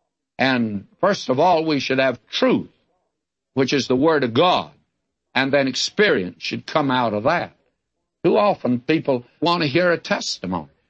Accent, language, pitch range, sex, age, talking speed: American, English, 120-155 Hz, male, 60-79, 165 wpm